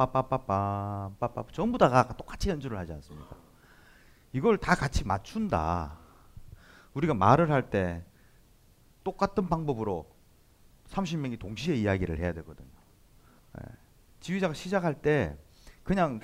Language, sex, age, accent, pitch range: Korean, male, 30-49, native, 95-155 Hz